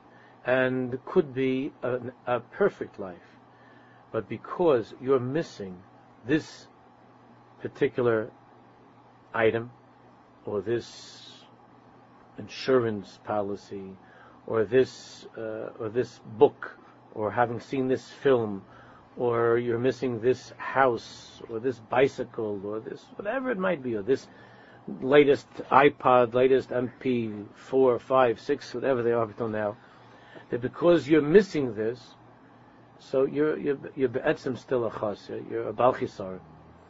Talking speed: 115 wpm